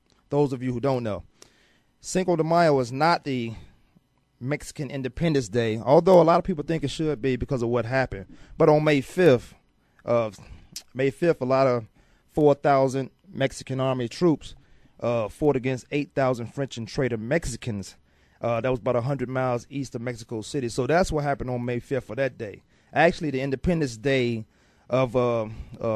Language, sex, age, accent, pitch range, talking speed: English, male, 30-49, American, 115-150 Hz, 180 wpm